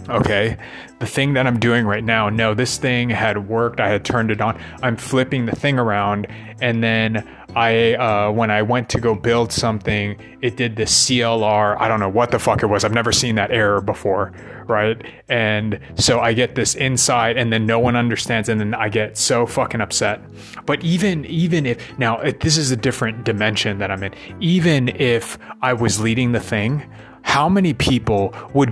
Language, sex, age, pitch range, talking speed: English, male, 30-49, 110-125 Hz, 200 wpm